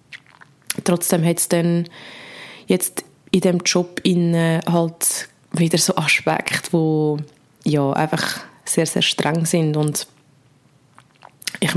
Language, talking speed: German, 110 wpm